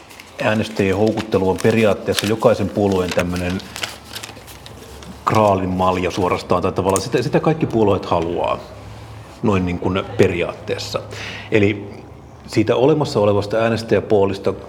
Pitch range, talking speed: 95-110 Hz, 95 wpm